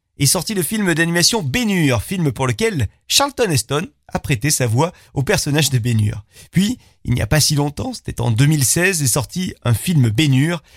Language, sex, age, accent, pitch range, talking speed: French, male, 40-59, French, 120-175 Hz, 190 wpm